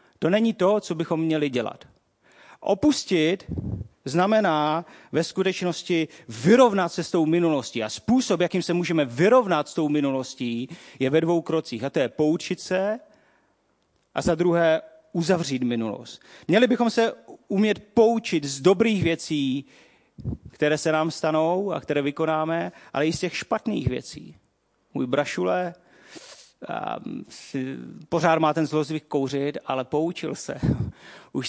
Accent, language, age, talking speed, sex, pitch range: native, Czech, 40-59, 135 wpm, male, 135-175 Hz